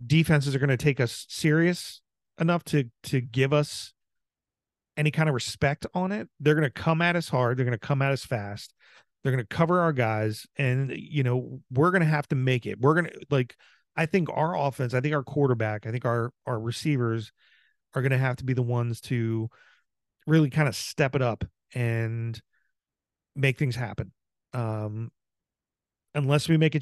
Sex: male